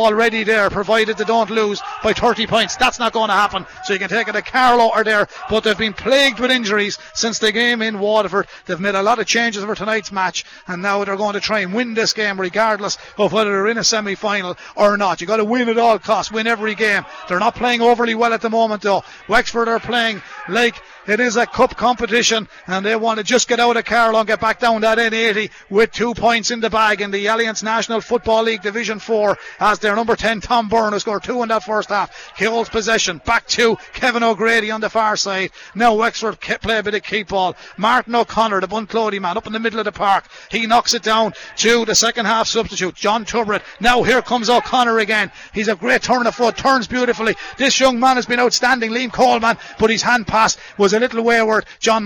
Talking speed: 235 wpm